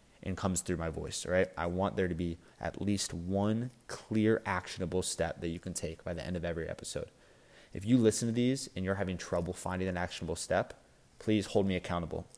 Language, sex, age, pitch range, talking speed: English, male, 20-39, 85-100 Hz, 215 wpm